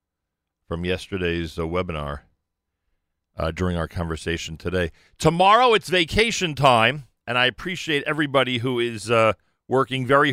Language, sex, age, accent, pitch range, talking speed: English, male, 40-59, American, 85-120 Hz, 130 wpm